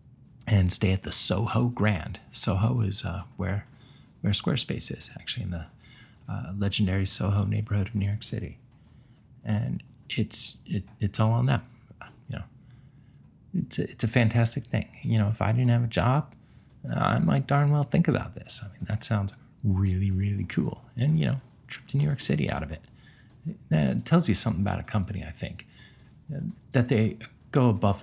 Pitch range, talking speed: 95-125 Hz, 185 wpm